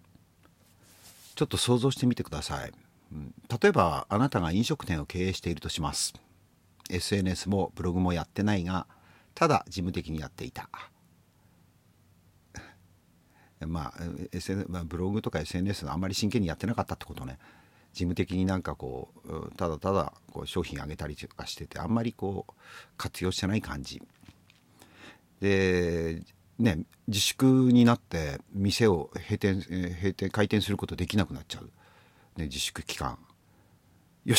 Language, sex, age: Japanese, male, 50-69